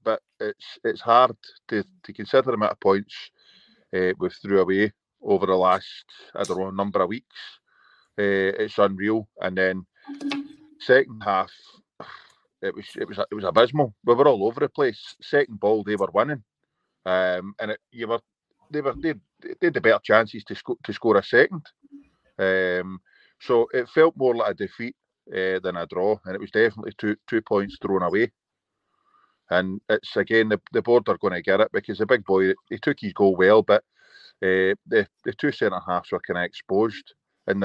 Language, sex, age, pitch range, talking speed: English, male, 30-49, 95-150 Hz, 190 wpm